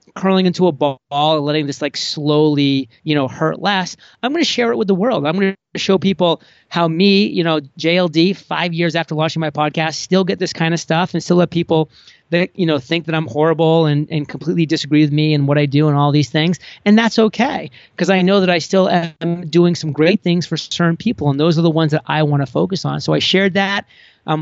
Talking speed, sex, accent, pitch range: 250 wpm, male, American, 150-180 Hz